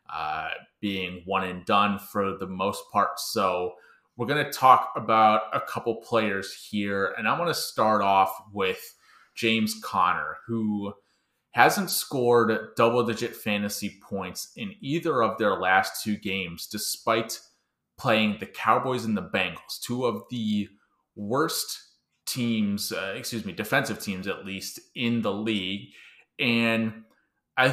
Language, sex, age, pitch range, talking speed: English, male, 20-39, 100-120 Hz, 140 wpm